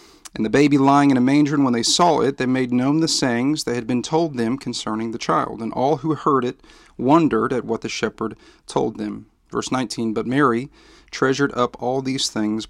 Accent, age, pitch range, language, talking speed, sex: American, 40-59, 115-135 Hz, English, 215 wpm, male